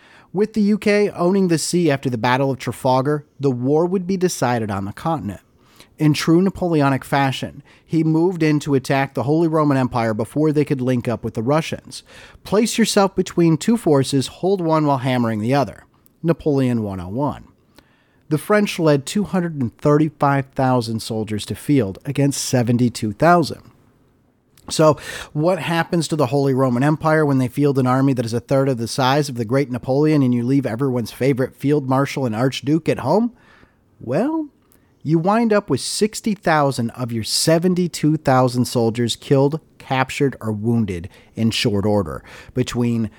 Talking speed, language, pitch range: 160 wpm, English, 120-155 Hz